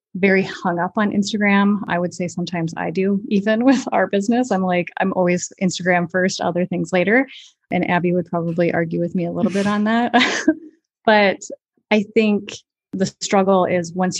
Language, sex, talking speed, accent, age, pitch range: English, female, 180 wpm, American, 30-49, 175-200 Hz